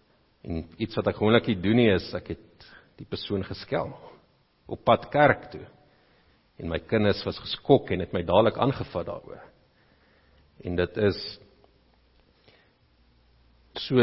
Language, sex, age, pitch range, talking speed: English, male, 50-69, 100-130 Hz, 135 wpm